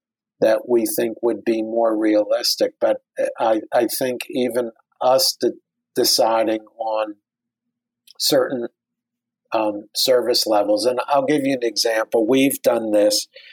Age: 50-69